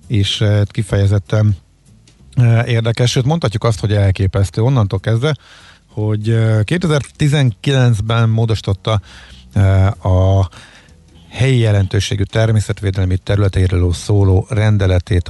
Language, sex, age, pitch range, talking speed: Hungarian, male, 50-69, 95-120 Hz, 80 wpm